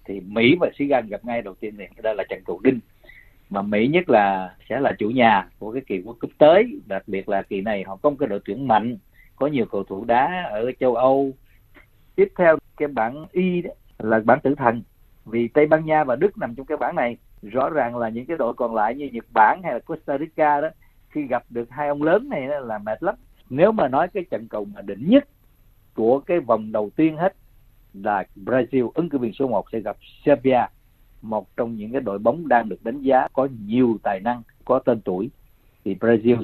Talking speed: 230 wpm